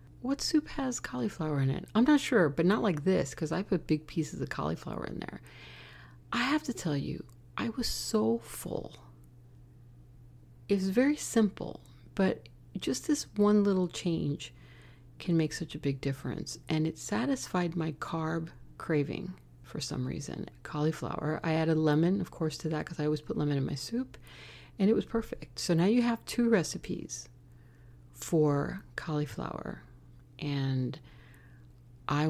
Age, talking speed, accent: 40-59, 160 wpm, American